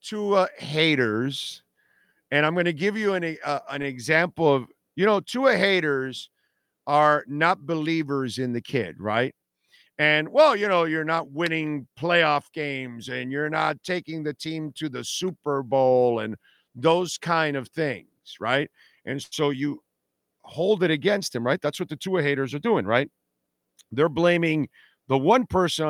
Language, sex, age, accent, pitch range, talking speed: English, male, 50-69, American, 135-180 Hz, 165 wpm